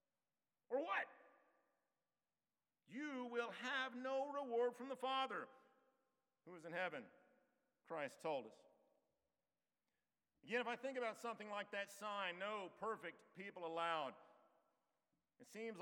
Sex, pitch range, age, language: male, 185-265 Hz, 50-69, English